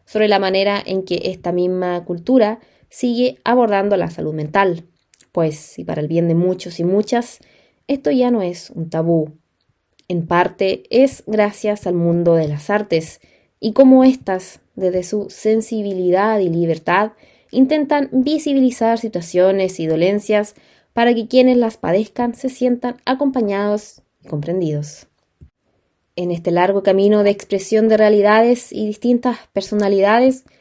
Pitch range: 180-245 Hz